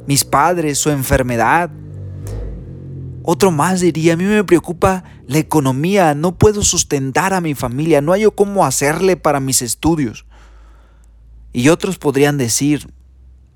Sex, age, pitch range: male, 40-59, 105-160 Hz